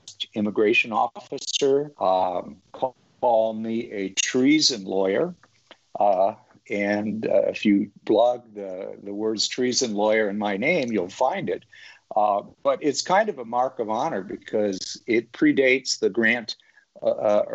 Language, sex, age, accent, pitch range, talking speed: English, male, 50-69, American, 100-125 Hz, 135 wpm